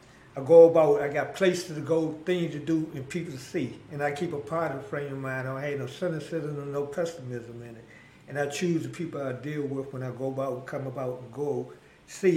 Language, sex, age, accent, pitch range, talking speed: English, male, 60-79, American, 145-175 Hz, 250 wpm